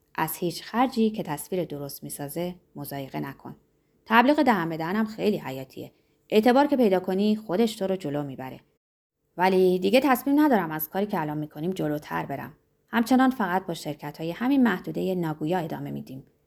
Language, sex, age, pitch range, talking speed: Persian, female, 20-39, 150-215 Hz, 165 wpm